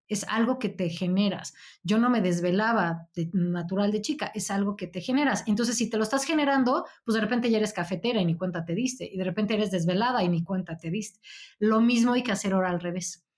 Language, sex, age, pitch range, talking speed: Spanish, female, 20-39, 180-230 Hz, 240 wpm